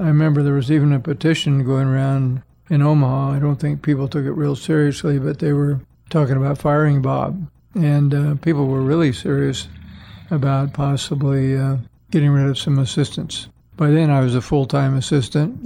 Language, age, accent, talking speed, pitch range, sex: English, 50-69, American, 180 wpm, 135-150 Hz, male